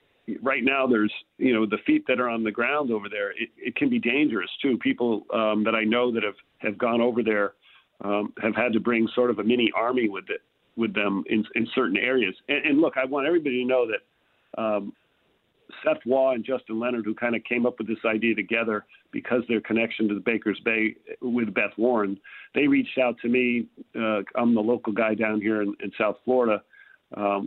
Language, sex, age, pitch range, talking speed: English, male, 40-59, 105-125 Hz, 220 wpm